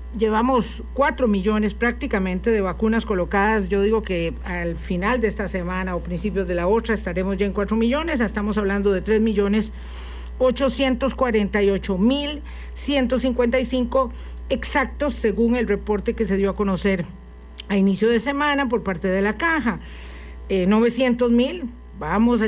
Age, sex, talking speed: 50-69, female, 135 wpm